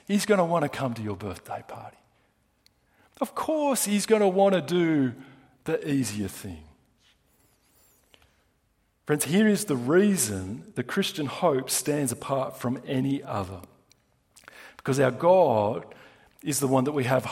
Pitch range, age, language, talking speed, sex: 125-180 Hz, 50-69, English, 150 wpm, male